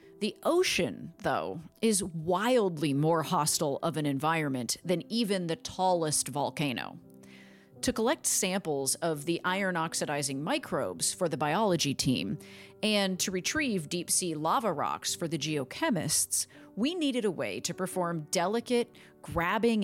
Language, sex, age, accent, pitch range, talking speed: English, female, 40-59, American, 150-210 Hz, 130 wpm